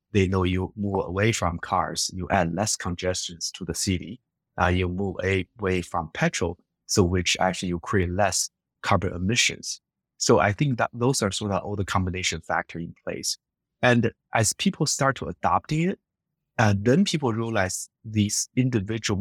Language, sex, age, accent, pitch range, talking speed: English, male, 20-39, Chinese, 90-115 Hz, 170 wpm